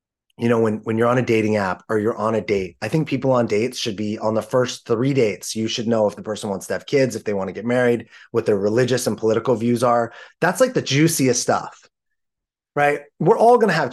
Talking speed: 255 wpm